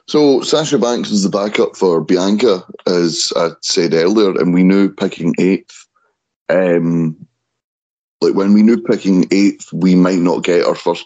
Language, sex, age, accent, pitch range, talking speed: English, male, 30-49, British, 90-110 Hz, 165 wpm